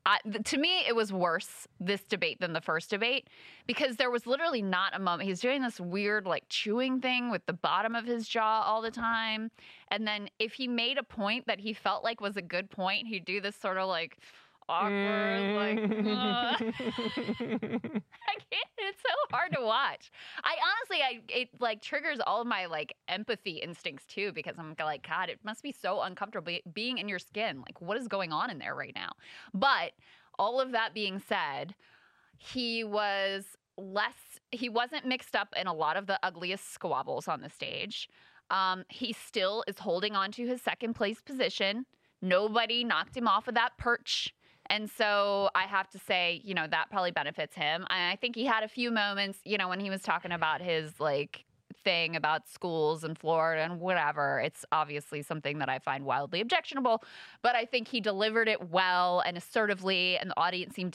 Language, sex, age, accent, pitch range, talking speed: English, female, 20-39, American, 175-230 Hz, 195 wpm